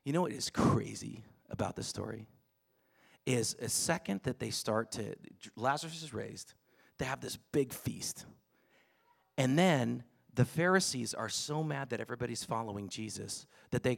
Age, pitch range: 40-59, 115-165 Hz